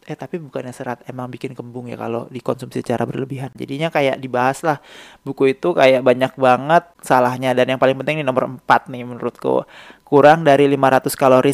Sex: male